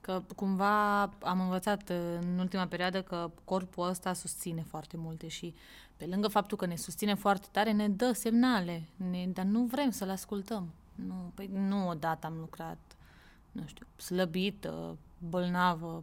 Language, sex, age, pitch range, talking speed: Romanian, female, 20-39, 175-210 Hz, 155 wpm